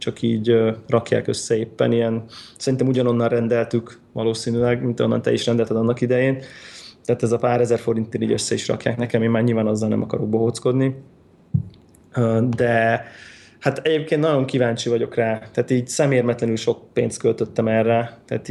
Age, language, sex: 20-39, Hungarian, male